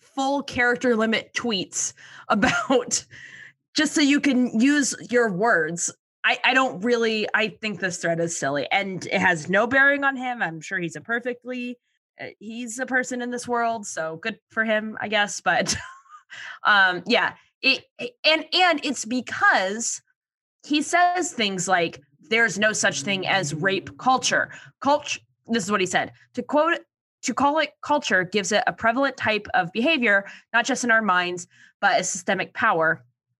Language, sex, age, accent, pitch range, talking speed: English, female, 20-39, American, 190-250 Hz, 170 wpm